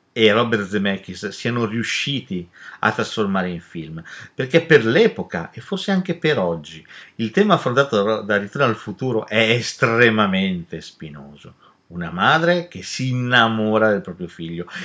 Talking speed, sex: 140 wpm, male